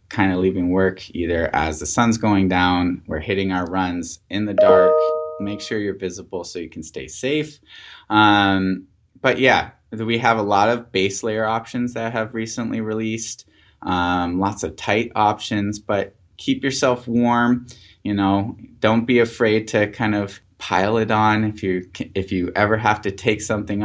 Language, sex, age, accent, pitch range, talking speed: English, male, 20-39, American, 90-110 Hz, 175 wpm